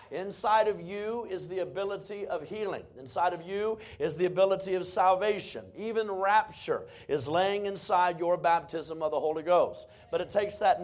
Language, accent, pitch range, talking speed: English, American, 160-215 Hz, 170 wpm